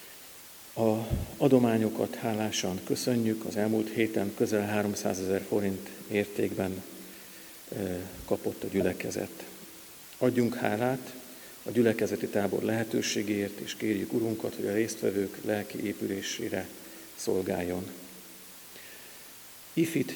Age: 50-69